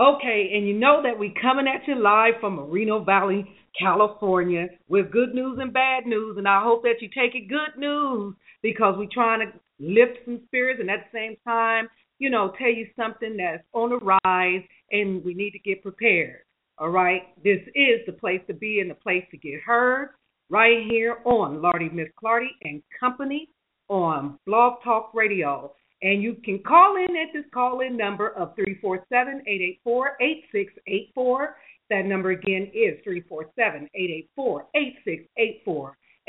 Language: English